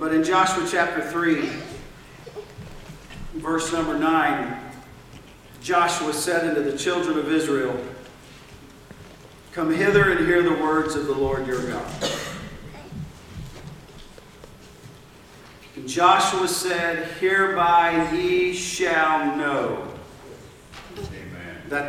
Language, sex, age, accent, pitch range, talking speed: English, male, 50-69, American, 130-175 Hz, 95 wpm